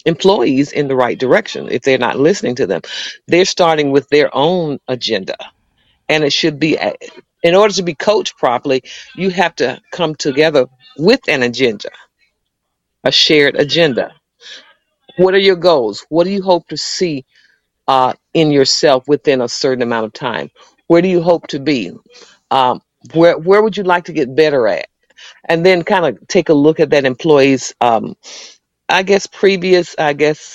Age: 50-69